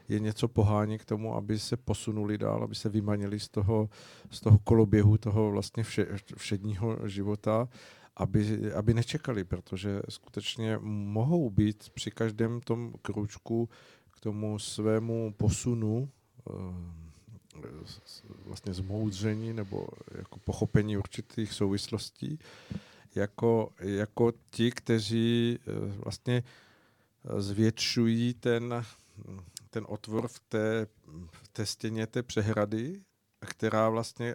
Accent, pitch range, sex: native, 105-120 Hz, male